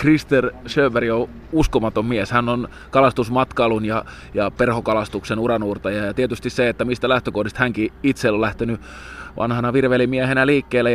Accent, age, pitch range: native, 20-39, 105-120 Hz